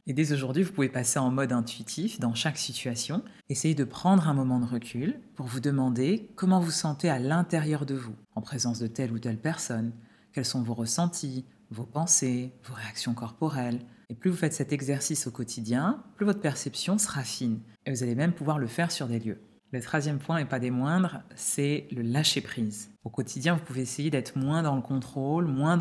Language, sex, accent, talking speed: French, female, French, 210 wpm